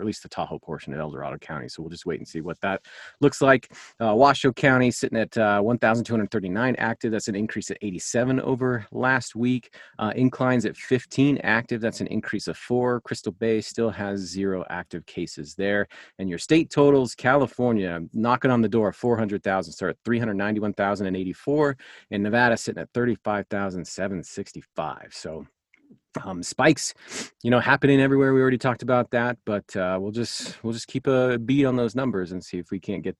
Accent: American